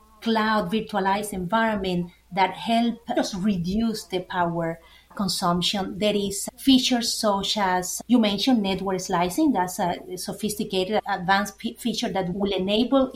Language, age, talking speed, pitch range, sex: English, 30-49, 130 wpm, 190-225 Hz, female